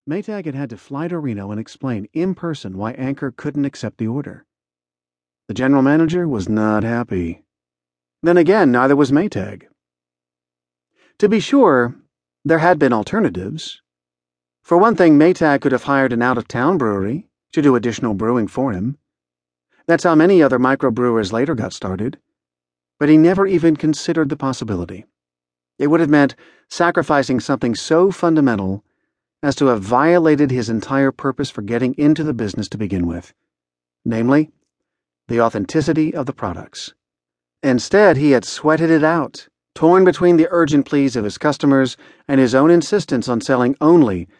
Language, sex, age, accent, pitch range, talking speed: English, male, 40-59, American, 100-150 Hz, 155 wpm